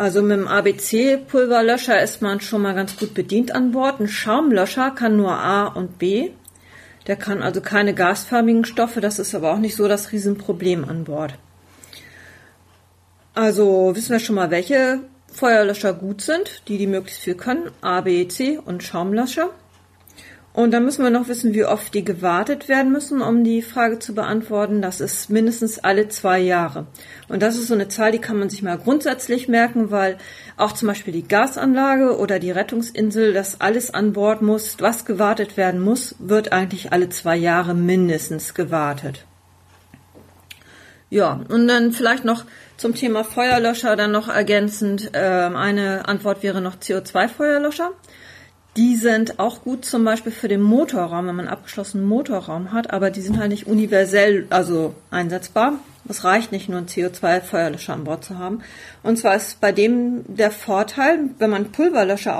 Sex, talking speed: female, 165 wpm